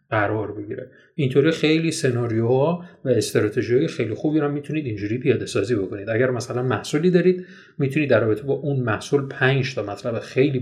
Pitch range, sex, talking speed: 115-160 Hz, male, 160 wpm